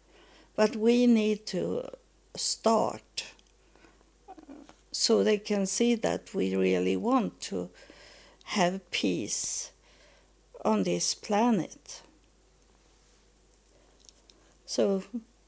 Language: English